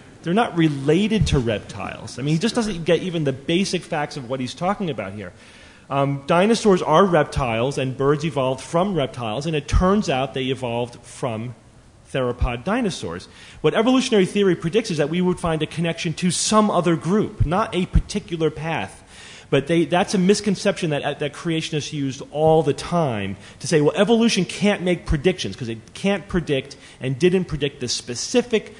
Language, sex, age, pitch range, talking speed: English, male, 40-59, 130-175 Hz, 180 wpm